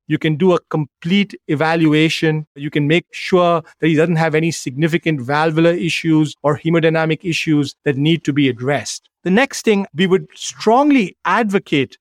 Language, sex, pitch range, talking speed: English, male, 160-195 Hz, 165 wpm